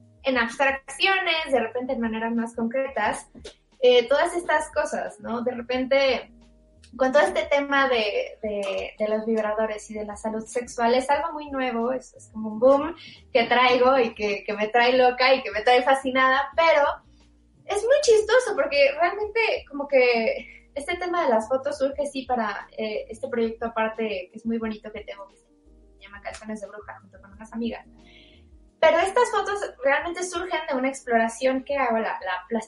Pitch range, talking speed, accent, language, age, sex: 230-300 Hz, 180 wpm, Mexican, Spanish, 20-39, female